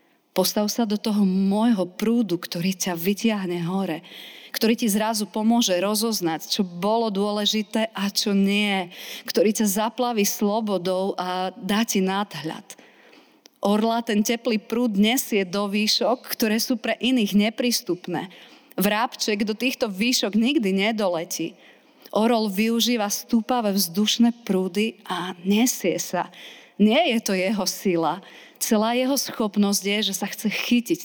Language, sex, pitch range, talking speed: Slovak, female, 190-230 Hz, 130 wpm